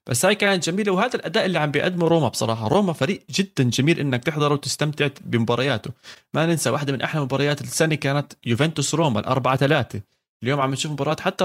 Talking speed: 190 wpm